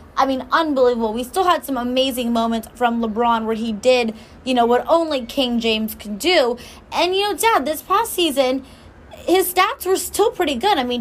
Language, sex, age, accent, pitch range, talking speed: English, female, 10-29, American, 245-310 Hz, 200 wpm